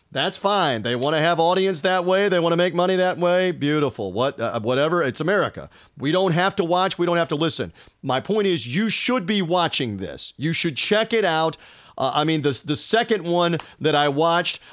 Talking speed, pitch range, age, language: 225 wpm, 145-185 Hz, 40-59, English